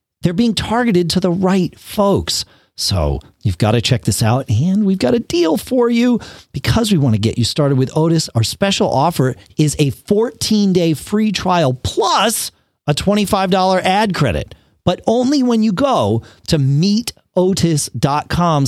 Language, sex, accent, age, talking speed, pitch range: English, male, American, 40-59, 160 wpm, 130-175 Hz